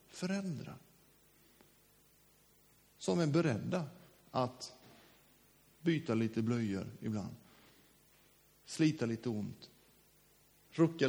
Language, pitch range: Swedish, 115-155 Hz